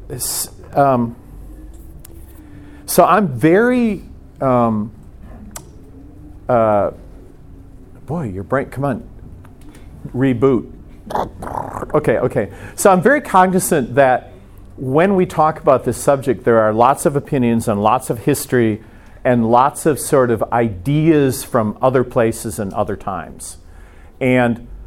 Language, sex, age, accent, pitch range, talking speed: English, male, 50-69, American, 110-140 Hz, 115 wpm